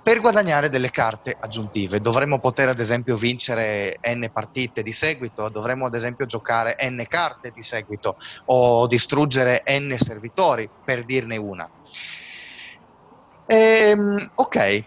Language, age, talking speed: Italian, 30-49, 120 wpm